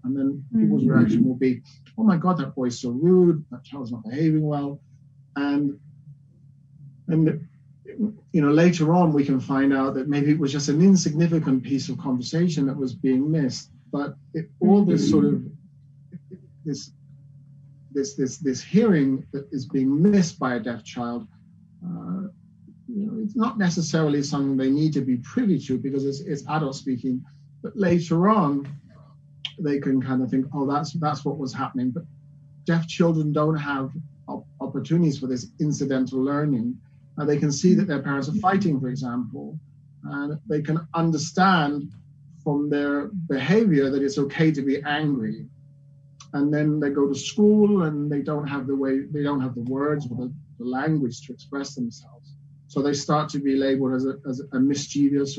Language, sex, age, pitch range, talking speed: English, male, 40-59, 135-155 Hz, 175 wpm